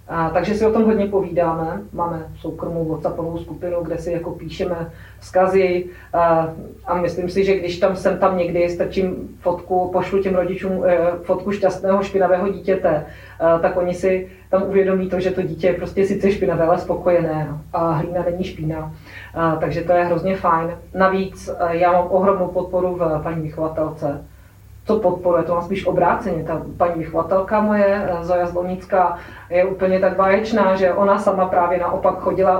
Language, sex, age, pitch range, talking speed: Czech, female, 30-49, 170-190 Hz, 160 wpm